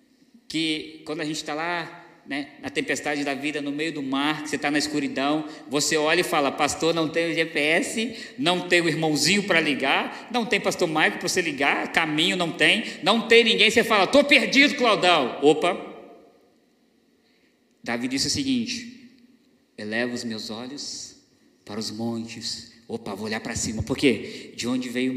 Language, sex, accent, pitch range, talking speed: Portuguese, male, Brazilian, 140-225 Hz, 175 wpm